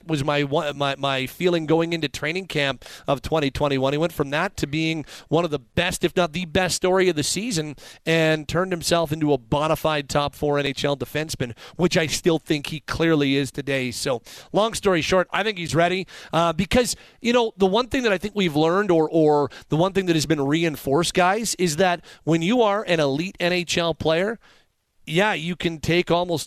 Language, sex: English, male